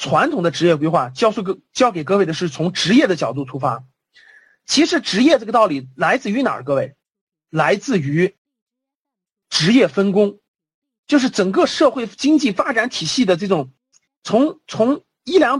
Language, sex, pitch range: Chinese, male, 165-275 Hz